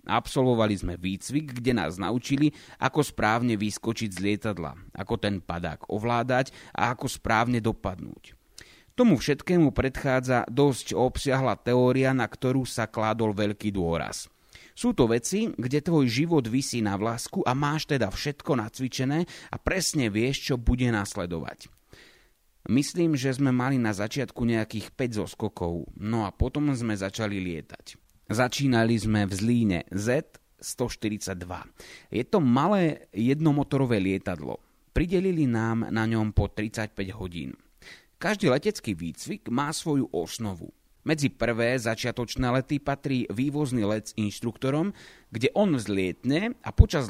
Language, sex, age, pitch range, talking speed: Slovak, male, 30-49, 105-135 Hz, 130 wpm